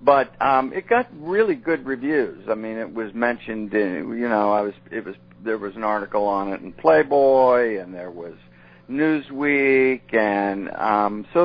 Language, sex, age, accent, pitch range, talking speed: English, male, 50-69, American, 85-125 Hz, 180 wpm